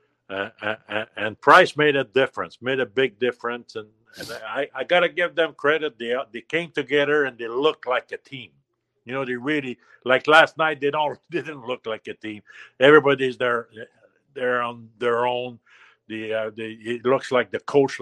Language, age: English, 60-79